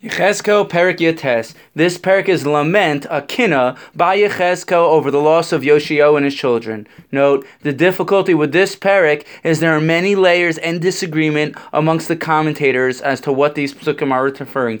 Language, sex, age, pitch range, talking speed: English, male, 20-39, 155-225 Hz, 170 wpm